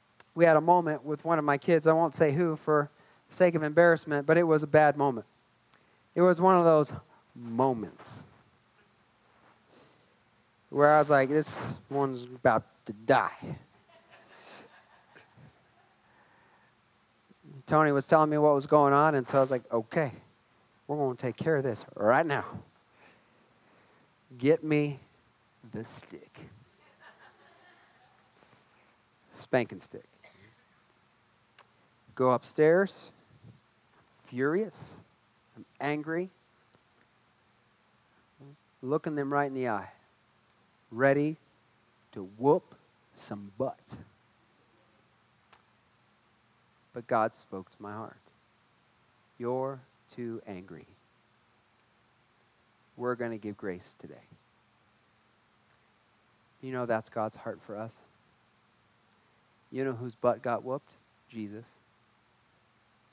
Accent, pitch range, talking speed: American, 120-155 Hz, 105 wpm